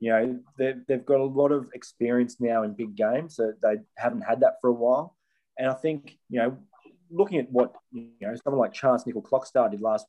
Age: 20-39